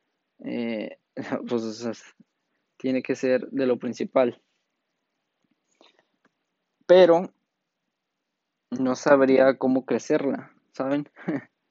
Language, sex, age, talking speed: Spanish, male, 20-39, 80 wpm